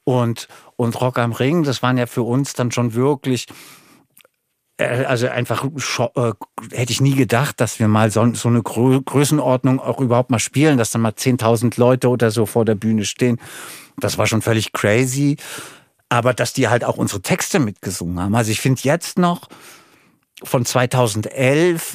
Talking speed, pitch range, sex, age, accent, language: 165 wpm, 120-150 Hz, male, 50-69, German, German